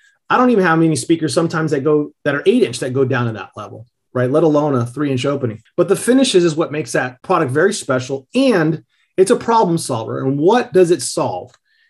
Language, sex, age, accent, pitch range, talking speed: English, male, 30-49, American, 135-195 Hz, 230 wpm